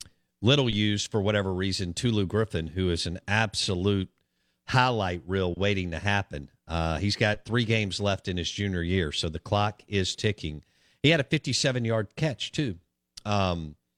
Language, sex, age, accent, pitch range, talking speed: English, male, 50-69, American, 90-125 Hz, 165 wpm